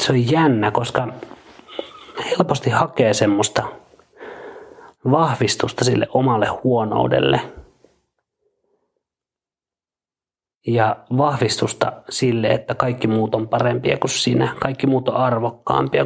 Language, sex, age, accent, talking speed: Finnish, male, 30-49, native, 95 wpm